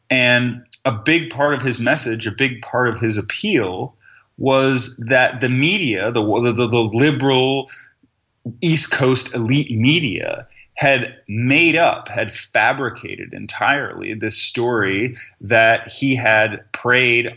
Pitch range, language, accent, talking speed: 100-130 Hz, English, American, 130 wpm